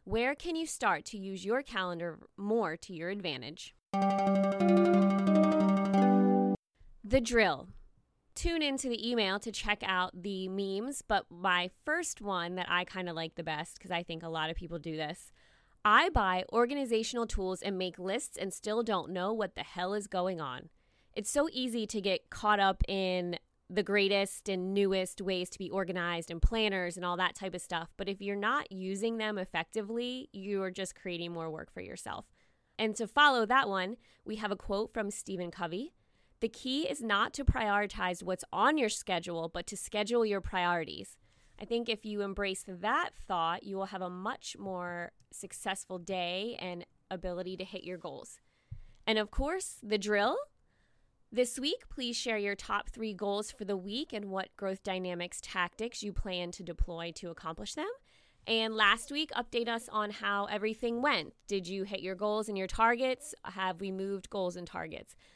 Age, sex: 20-39, female